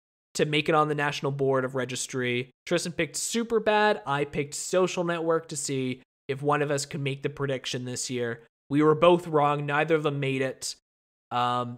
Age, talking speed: 20-39, 200 wpm